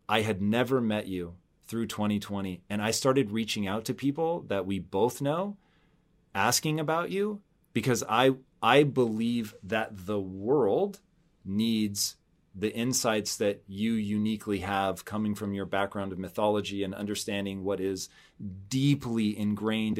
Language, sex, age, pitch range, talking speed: English, male, 30-49, 100-115 Hz, 140 wpm